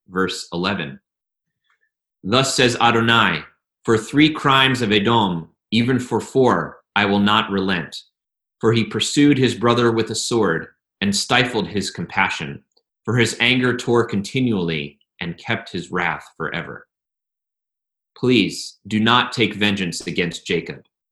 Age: 30-49